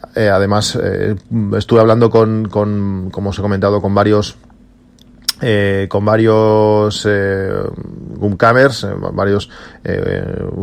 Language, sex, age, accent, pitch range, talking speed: Spanish, male, 30-49, Spanish, 100-120 Hz, 120 wpm